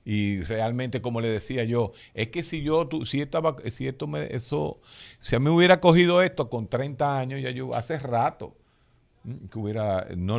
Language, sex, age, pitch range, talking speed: Spanish, male, 50-69, 100-130 Hz, 190 wpm